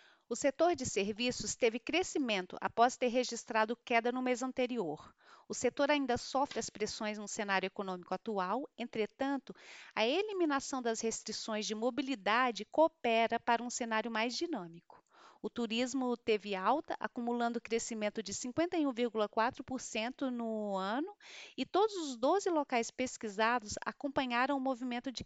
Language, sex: Portuguese, female